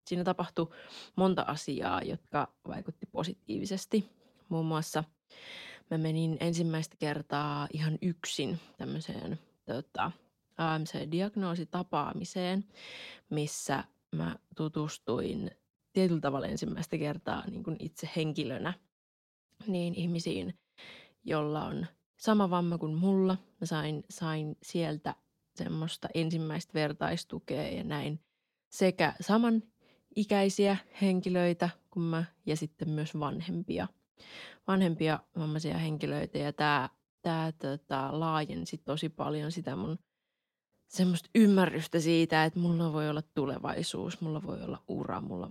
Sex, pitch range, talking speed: female, 155-185 Hz, 100 wpm